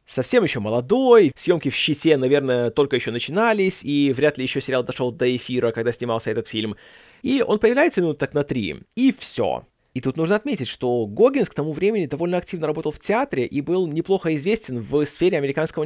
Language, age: Russian, 20-39